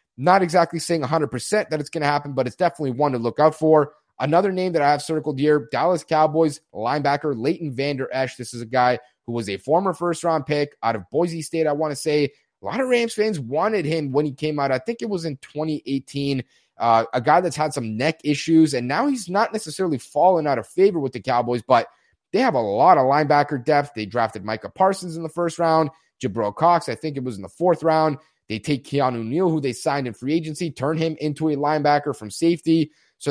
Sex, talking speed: male, 235 wpm